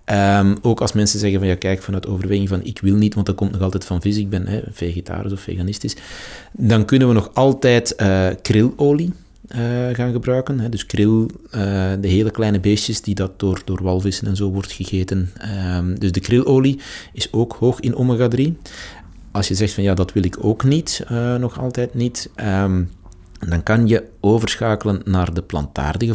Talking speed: 195 wpm